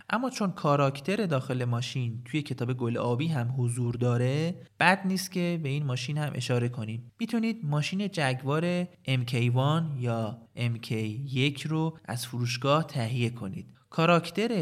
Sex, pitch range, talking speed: male, 120-155 Hz, 135 wpm